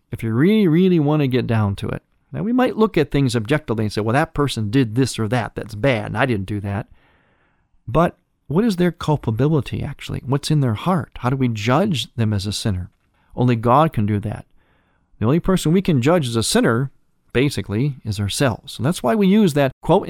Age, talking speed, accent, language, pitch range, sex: 40-59, 225 wpm, American, English, 115-160 Hz, male